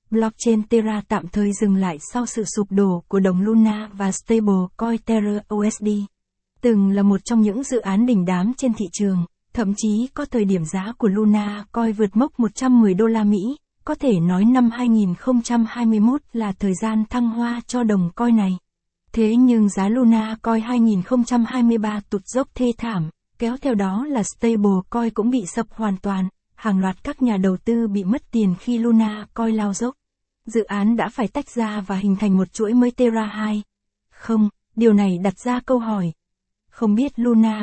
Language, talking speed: Vietnamese, 185 wpm